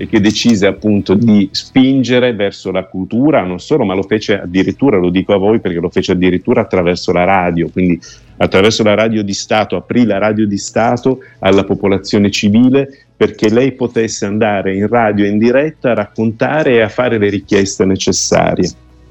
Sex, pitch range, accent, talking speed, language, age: male, 90-110 Hz, native, 175 wpm, Italian, 50-69